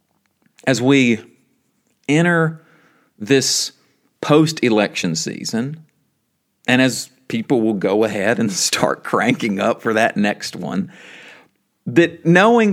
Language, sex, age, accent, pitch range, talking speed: English, male, 40-59, American, 105-150 Hz, 105 wpm